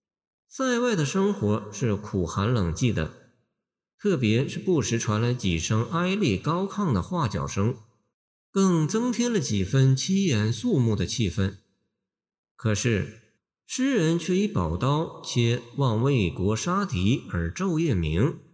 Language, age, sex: Chinese, 50-69, male